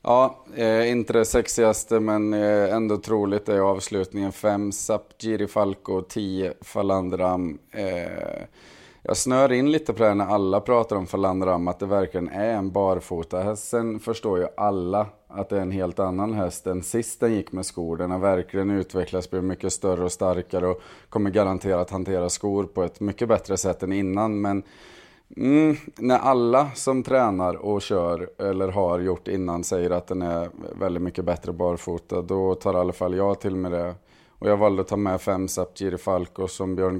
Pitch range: 95-105 Hz